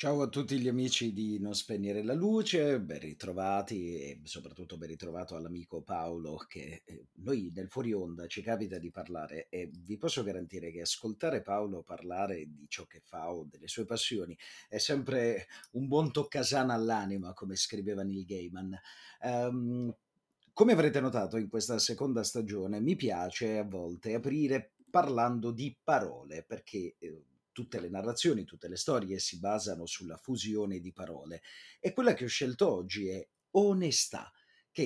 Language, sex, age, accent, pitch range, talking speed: Italian, male, 30-49, native, 95-135 Hz, 155 wpm